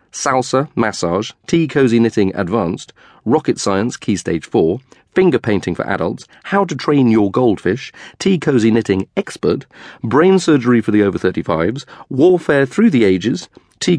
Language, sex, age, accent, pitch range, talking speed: English, male, 40-59, British, 95-130 Hz, 145 wpm